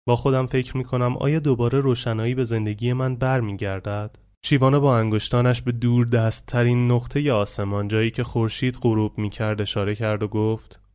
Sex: male